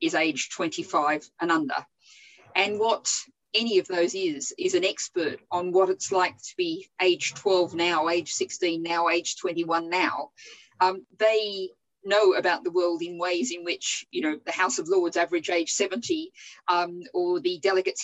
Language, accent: English, Australian